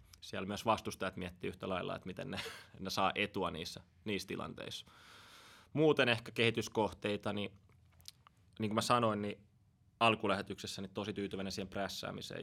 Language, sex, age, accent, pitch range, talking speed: Finnish, male, 20-39, native, 95-105 Hz, 140 wpm